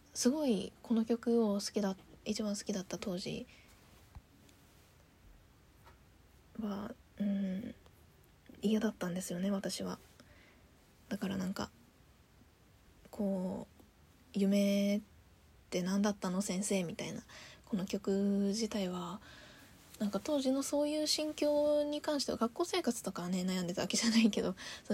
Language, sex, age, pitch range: Japanese, female, 20-39, 190-230 Hz